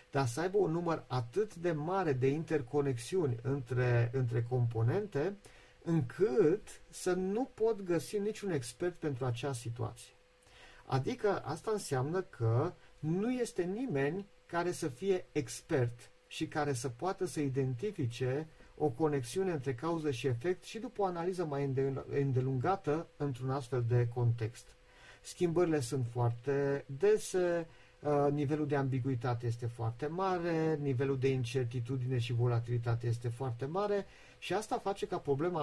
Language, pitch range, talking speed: English, 125-170 Hz, 135 wpm